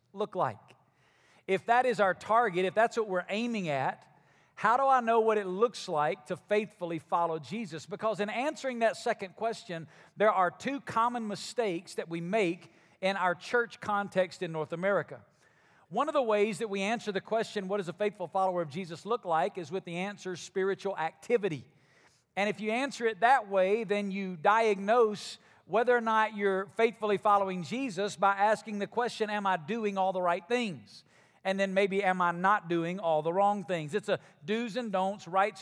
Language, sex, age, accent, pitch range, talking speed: English, male, 50-69, American, 180-220 Hz, 195 wpm